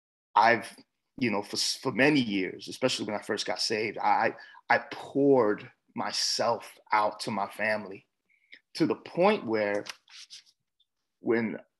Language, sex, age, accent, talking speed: English, male, 30-49, American, 130 wpm